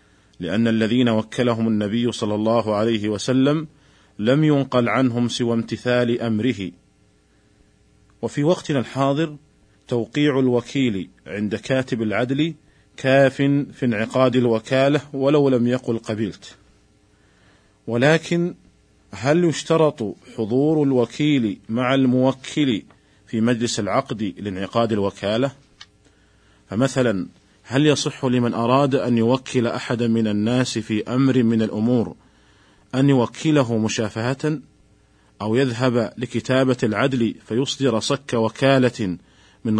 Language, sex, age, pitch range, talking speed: Arabic, male, 40-59, 110-135 Hz, 100 wpm